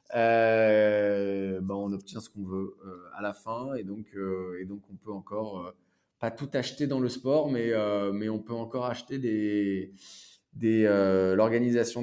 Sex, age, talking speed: male, 20-39, 185 wpm